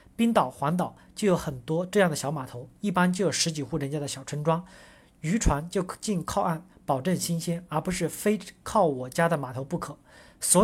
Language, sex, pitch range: Chinese, male, 150-195 Hz